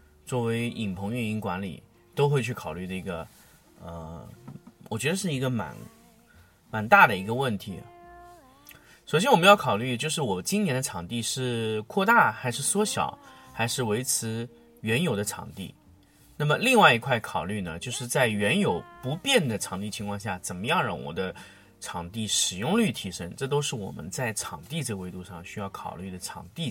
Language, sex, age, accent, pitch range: Chinese, male, 30-49, native, 100-150 Hz